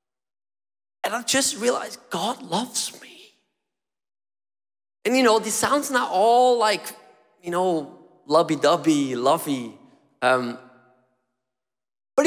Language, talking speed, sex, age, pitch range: English, 105 wpm, male, 30-49, 190-275 Hz